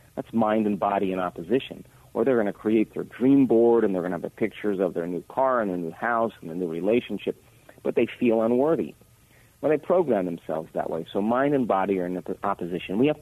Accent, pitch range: American, 95-125 Hz